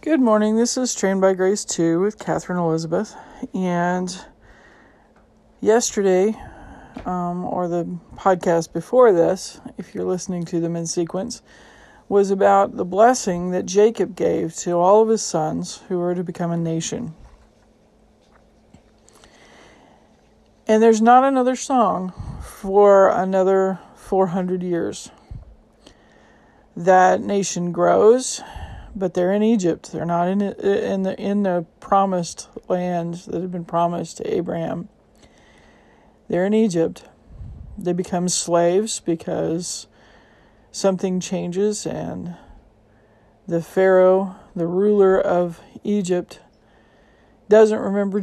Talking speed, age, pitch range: 115 wpm, 40-59, 175-205 Hz